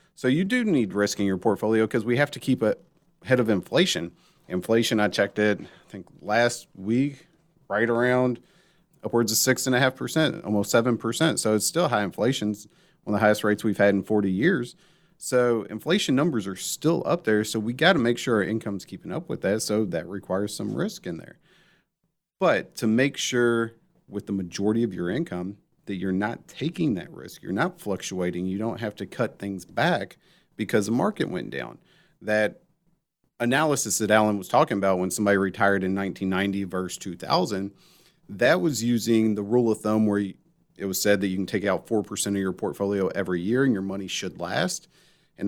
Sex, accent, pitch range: male, American, 100-125 Hz